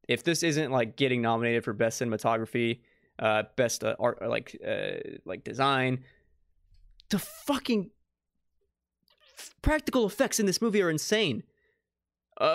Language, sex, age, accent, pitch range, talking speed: English, male, 20-39, American, 115-160 Hz, 125 wpm